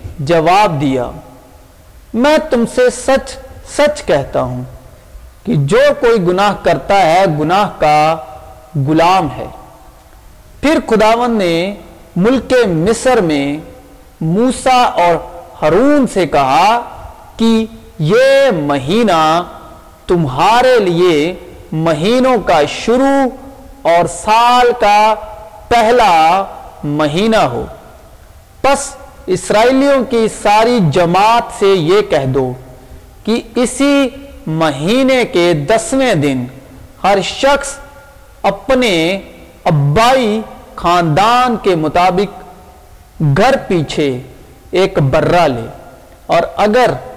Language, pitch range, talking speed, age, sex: Urdu, 165-245 Hz, 95 wpm, 50-69, male